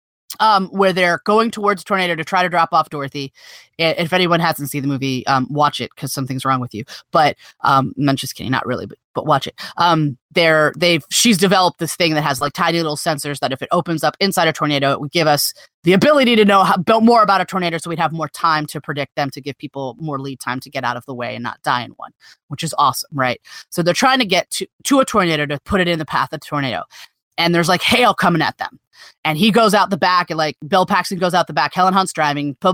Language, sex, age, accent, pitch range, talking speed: English, female, 30-49, American, 150-205 Hz, 265 wpm